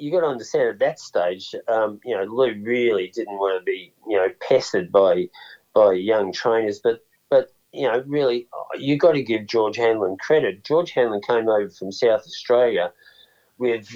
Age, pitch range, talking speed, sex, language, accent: 40-59, 105-130 Hz, 185 wpm, male, English, Australian